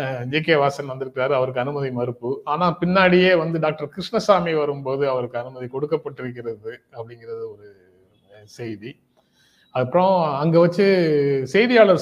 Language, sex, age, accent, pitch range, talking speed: Tamil, male, 30-49, native, 125-165 Hz, 115 wpm